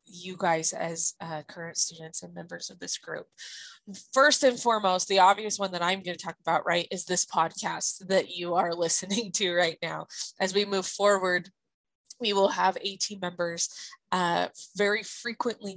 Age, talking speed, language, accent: 20-39, 175 wpm, English, American